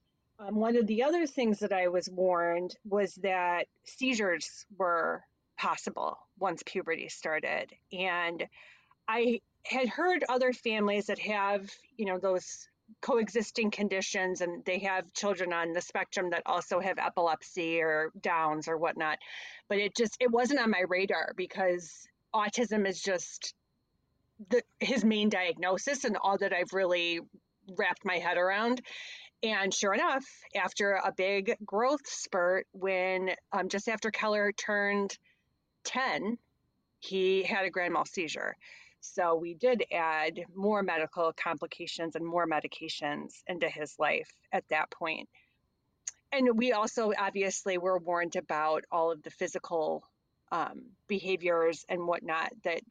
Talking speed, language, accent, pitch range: 140 wpm, English, American, 175-220 Hz